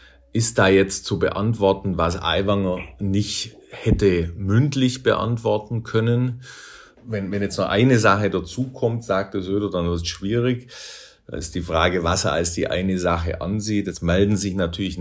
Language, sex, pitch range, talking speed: German, male, 85-115 Hz, 165 wpm